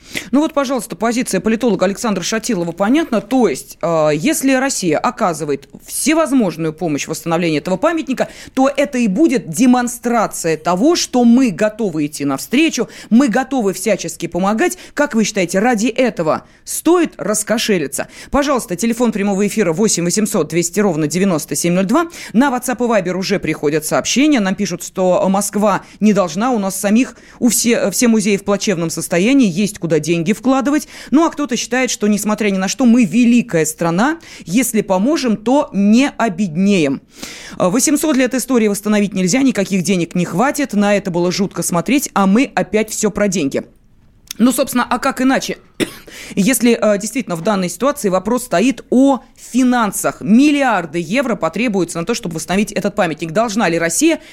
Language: Russian